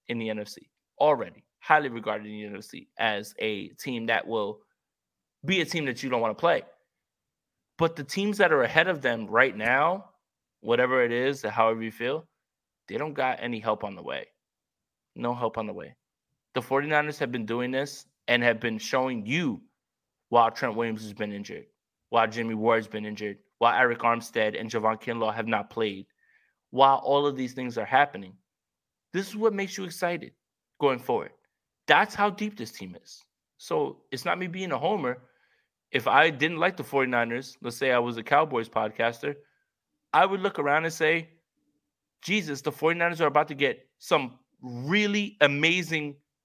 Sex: male